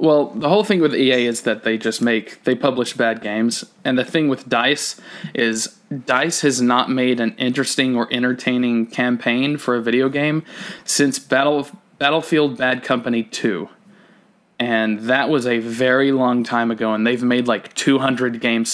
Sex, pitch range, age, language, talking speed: male, 120-155 Hz, 20-39, English, 170 wpm